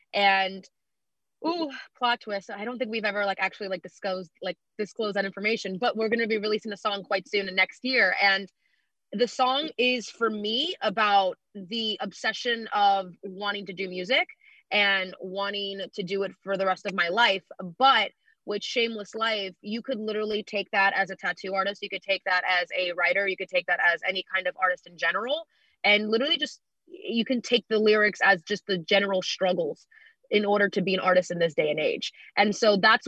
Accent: American